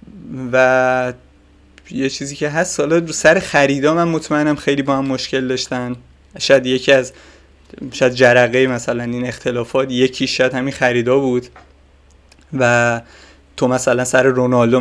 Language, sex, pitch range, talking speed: English, male, 120-130 Hz, 135 wpm